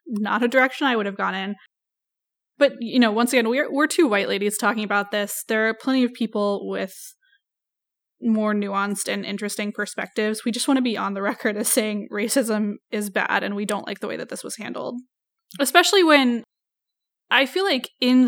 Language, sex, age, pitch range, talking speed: English, female, 20-39, 210-255 Hz, 195 wpm